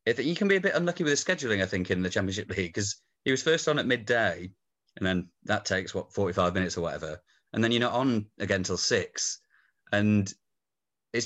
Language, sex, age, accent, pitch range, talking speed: English, male, 30-49, British, 95-110 Hz, 225 wpm